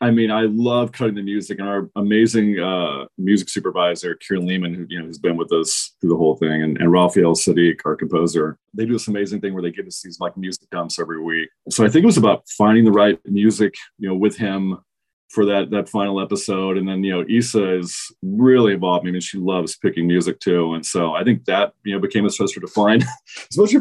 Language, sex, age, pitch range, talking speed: English, male, 30-49, 90-110 Hz, 235 wpm